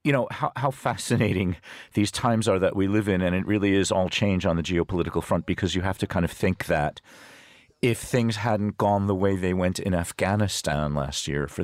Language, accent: English, American